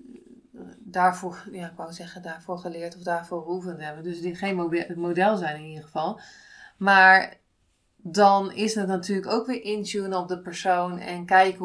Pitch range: 180-205 Hz